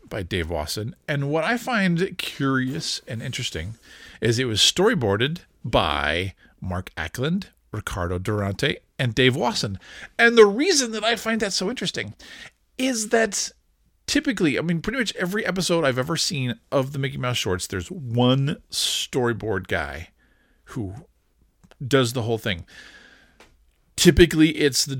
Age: 40-59